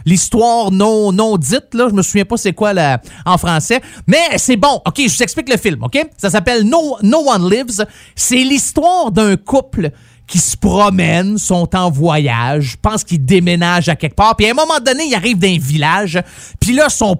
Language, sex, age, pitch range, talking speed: French, male, 30-49, 180-265 Hz, 210 wpm